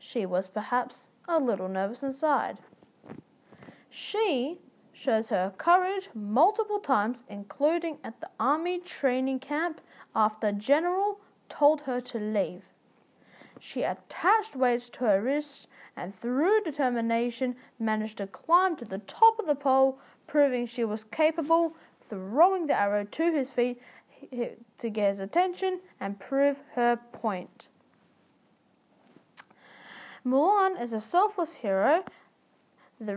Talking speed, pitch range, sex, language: 120 wpm, 220-310 Hz, female, English